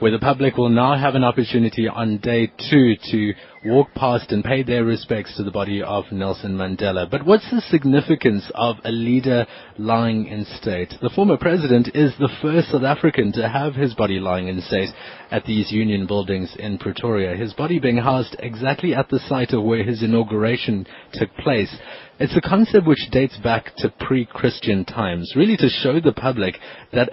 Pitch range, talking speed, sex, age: 105-135 Hz, 185 wpm, male, 30-49